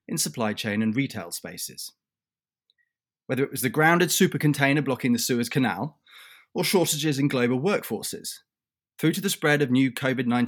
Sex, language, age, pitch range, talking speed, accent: male, English, 30-49, 115-160 Hz, 165 wpm, British